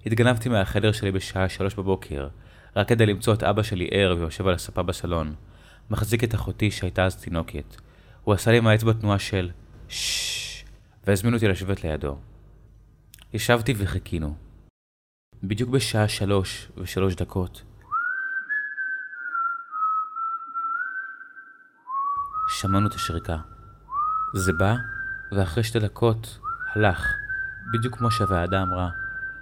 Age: 30-49